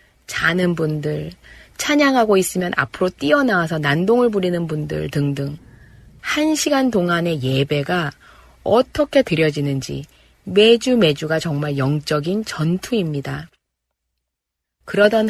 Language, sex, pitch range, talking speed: English, female, 150-230 Hz, 85 wpm